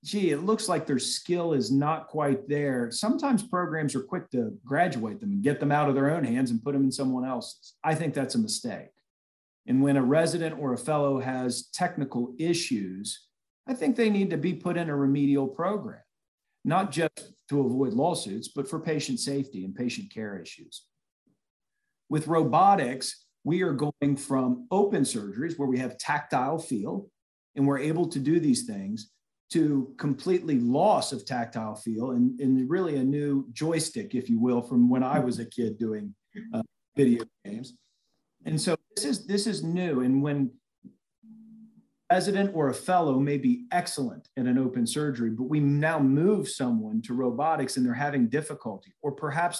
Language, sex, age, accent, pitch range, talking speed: English, male, 40-59, American, 130-180 Hz, 180 wpm